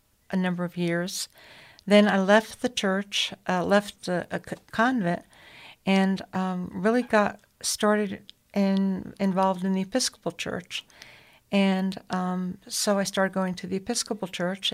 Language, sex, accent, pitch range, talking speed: English, female, American, 180-200 Hz, 145 wpm